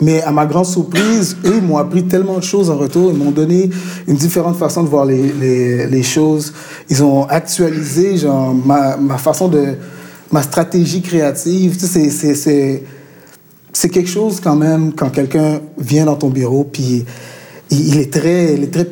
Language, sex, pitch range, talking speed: English, male, 145-175 Hz, 195 wpm